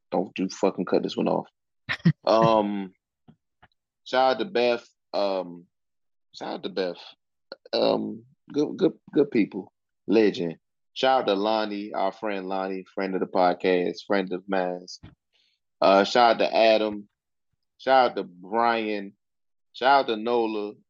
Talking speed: 145 wpm